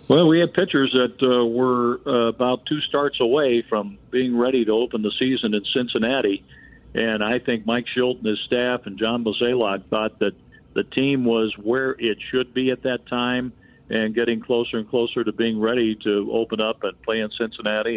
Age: 50-69